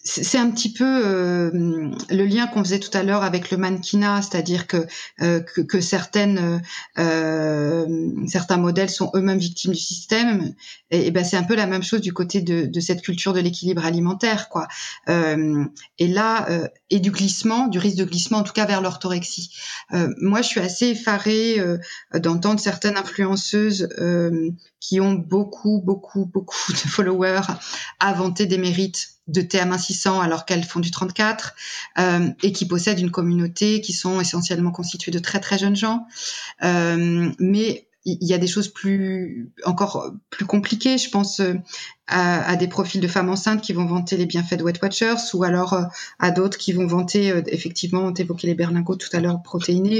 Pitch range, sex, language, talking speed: 175-205 Hz, female, French, 185 wpm